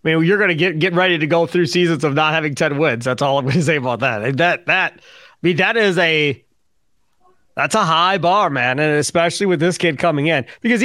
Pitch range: 155-225 Hz